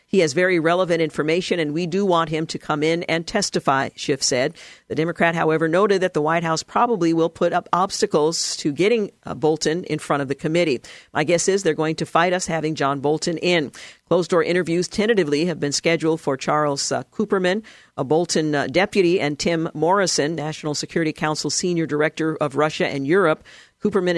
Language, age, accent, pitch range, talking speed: English, 50-69, American, 150-180 Hz, 195 wpm